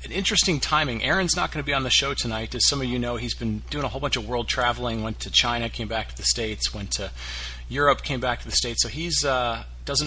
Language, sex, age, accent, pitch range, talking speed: English, male, 30-49, American, 105-130 Hz, 270 wpm